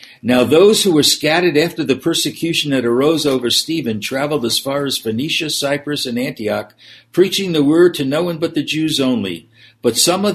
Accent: American